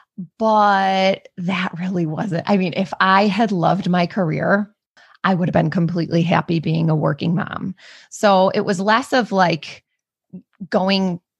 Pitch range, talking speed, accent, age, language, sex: 170-205 Hz, 155 wpm, American, 20-39, English, female